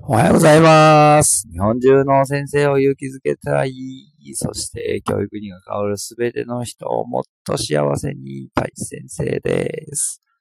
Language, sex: Japanese, male